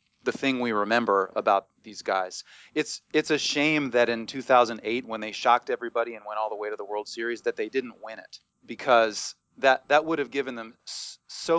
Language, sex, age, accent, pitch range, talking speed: English, male, 30-49, American, 110-130 Hz, 205 wpm